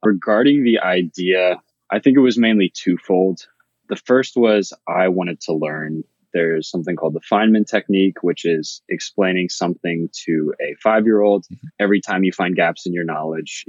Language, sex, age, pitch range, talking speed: English, male, 20-39, 90-105 Hz, 170 wpm